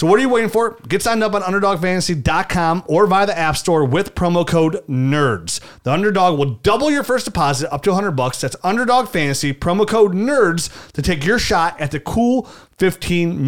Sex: male